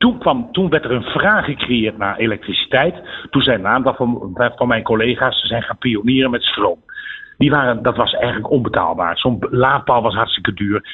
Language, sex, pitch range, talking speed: Dutch, male, 120-185 Hz, 195 wpm